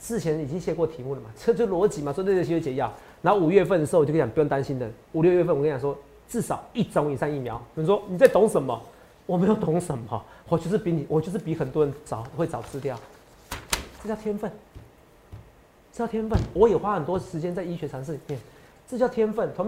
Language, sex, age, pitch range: Chinese, male, 40-59, 145-235 Hz